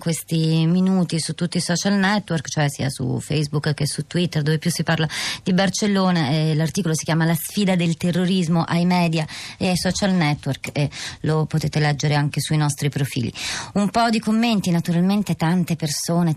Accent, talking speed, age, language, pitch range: native, 175 wpm, 30-49, Italian, 150-175 Hz